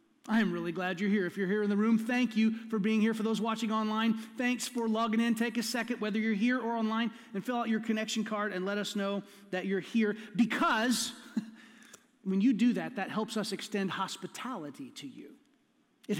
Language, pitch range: English, 205-260 Hz